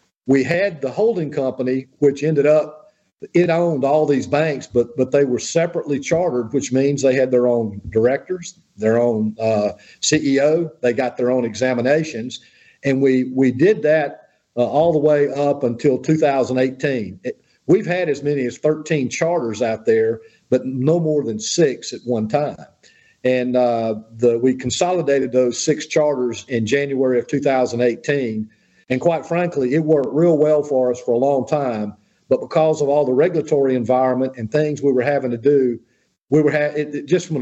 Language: English